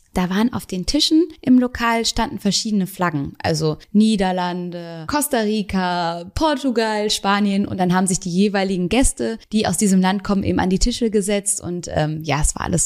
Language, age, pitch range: German, 20-39, 175-215 Hz